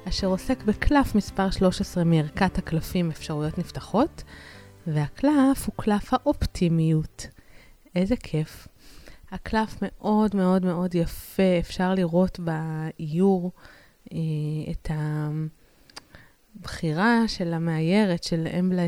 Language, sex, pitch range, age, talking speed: Hebrew, female, 165-205 Hz, 20-39, 95 wpm